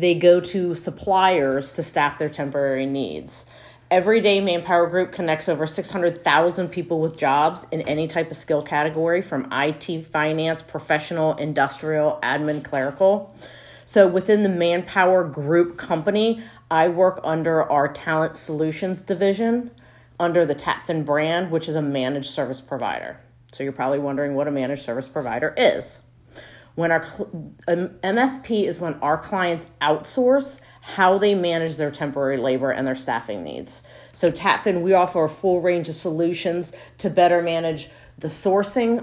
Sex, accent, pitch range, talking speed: female, American, 145-185 Hz, 150 wpm